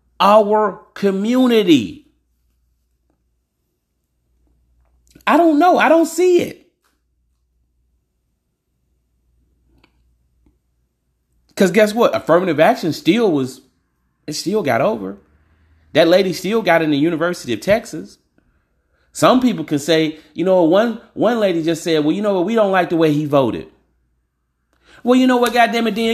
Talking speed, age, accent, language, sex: 135 wpm, 40-59, American, English, male